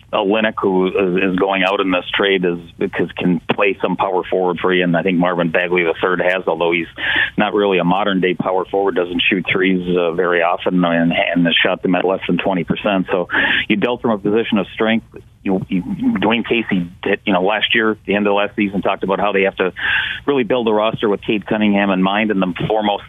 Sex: male